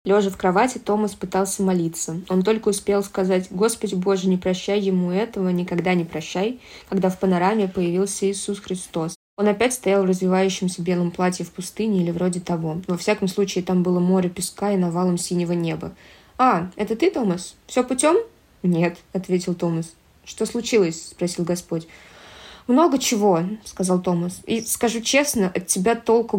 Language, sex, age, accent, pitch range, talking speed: Russian, female, 20-39, native, 180-210 Hz, 160 wpm